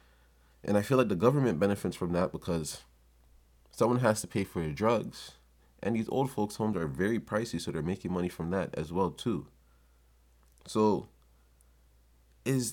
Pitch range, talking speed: 65-95 Hz, 170 wpm